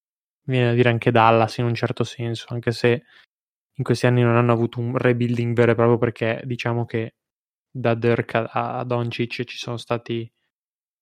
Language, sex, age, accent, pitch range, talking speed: Italian, male, 20-39, native, 115-125 Hz, 175 wpm